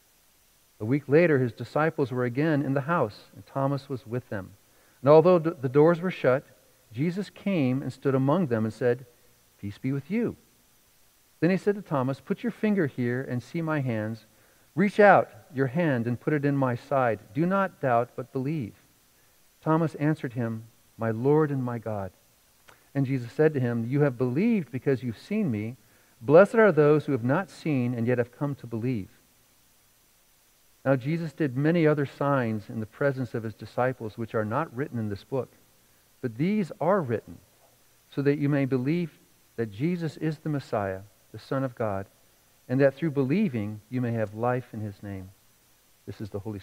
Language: English